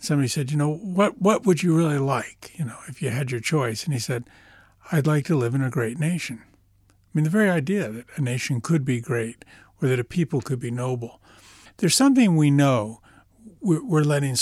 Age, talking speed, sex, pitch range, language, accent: 50-69, 215 wpm, male, 120-155 Hz, English, American